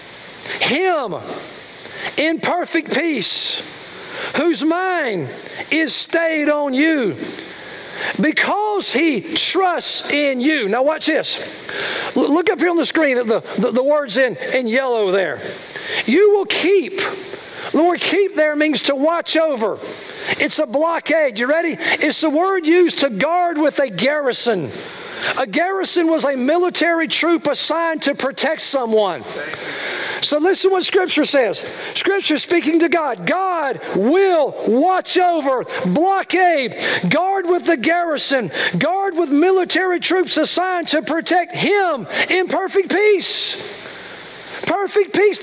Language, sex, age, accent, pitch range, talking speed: English, male, 50-69, American, 305-375 Hz, 135 wpm